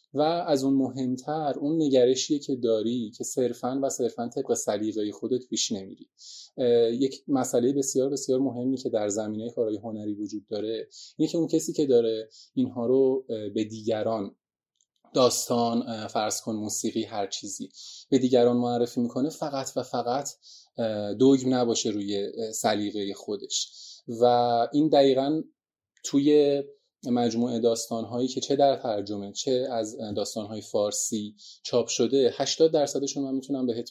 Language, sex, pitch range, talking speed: Persian, male, 115-140 Hz, 140 wpm